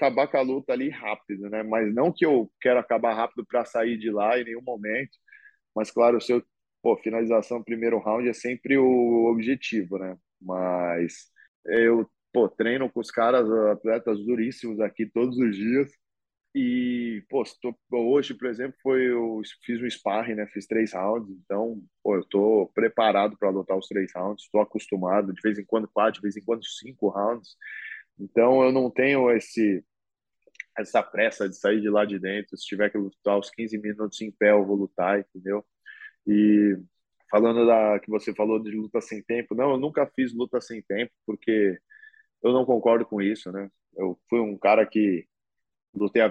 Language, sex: English, male